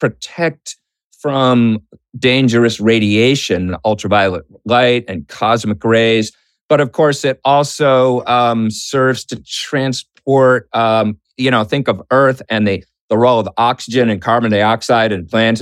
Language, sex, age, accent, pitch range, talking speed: English, male, 40-59, American, 105-130 Hz, 135 wpm